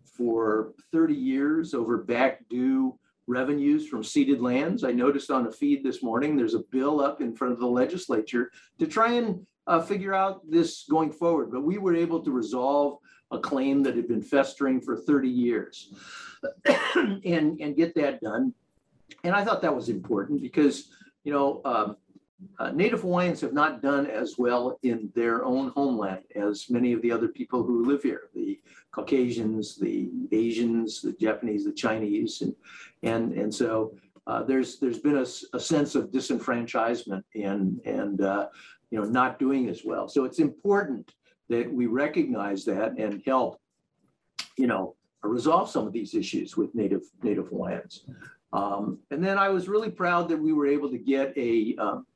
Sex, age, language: male, 50-69, English